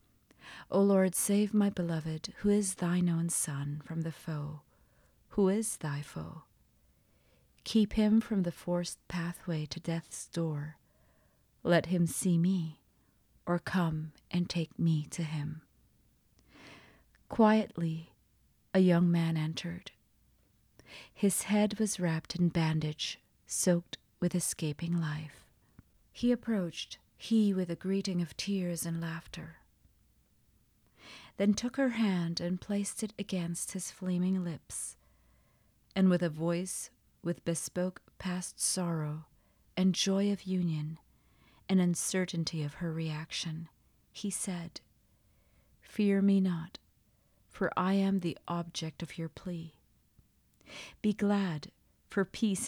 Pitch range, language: 160-190 Hz, English